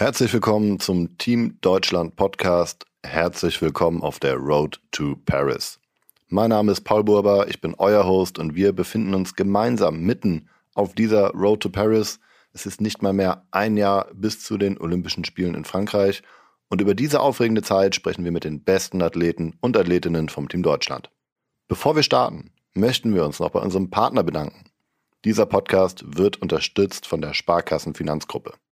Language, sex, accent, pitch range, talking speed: German, male, German, 95-120 Hz, 170 wpm